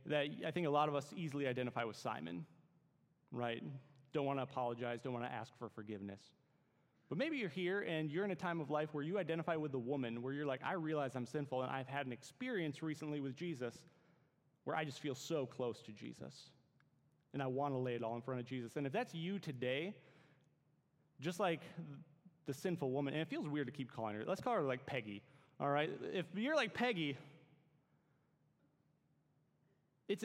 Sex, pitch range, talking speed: male, 130-165 Hz, 205 wpm